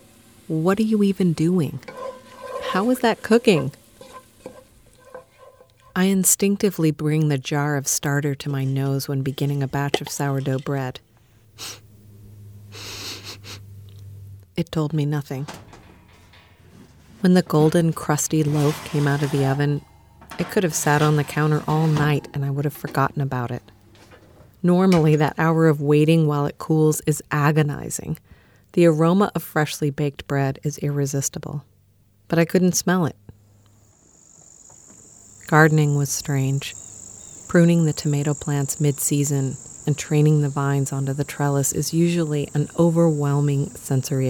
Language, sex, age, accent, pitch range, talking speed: English, female, 40-59, American, 135-160 Hz, 135 wpm